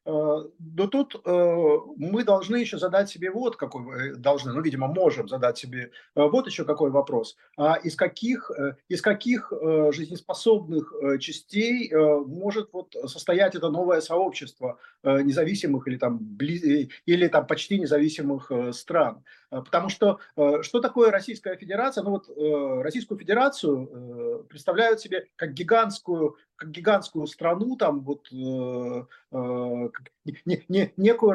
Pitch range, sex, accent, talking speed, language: 150-205 Hz, male, native, 115 wpm, Russian